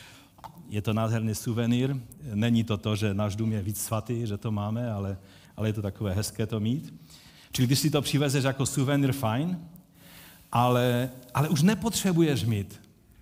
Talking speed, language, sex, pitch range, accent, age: 170 wpm, Czech, male, 105-135 Hz, native, 50-69